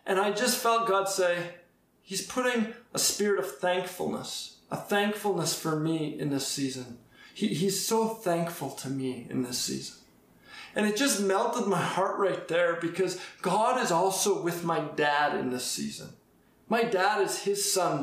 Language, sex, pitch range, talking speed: English, male, 175-215 Hz, 165 wpm